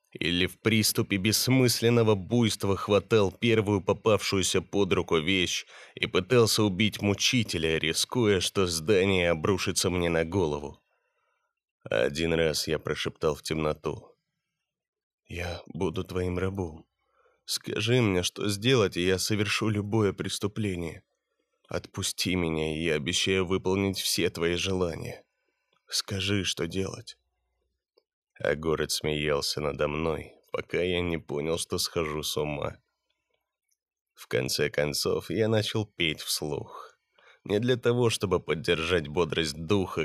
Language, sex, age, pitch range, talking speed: Russian, male, 20-39, 80-105 Hz, 120 wpm